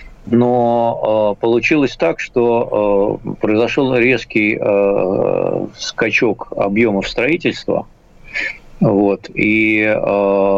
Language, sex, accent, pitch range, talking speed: Russian, male, native, 100-120 Hz, 80 wpm